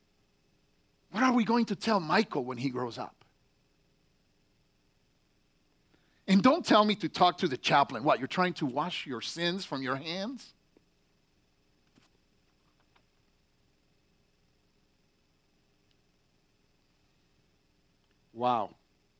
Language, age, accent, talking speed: English, 50-69, American, 90 wpm